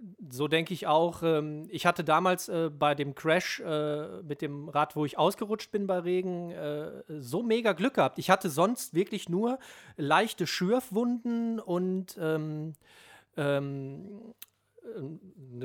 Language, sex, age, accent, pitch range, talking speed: German, male, 40-59, German, 150-200 Hz, 140 wpm